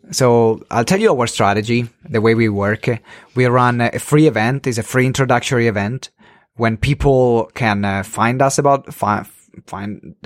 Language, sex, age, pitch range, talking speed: English, male, 30-49, 110-140 Hz, 165 wpm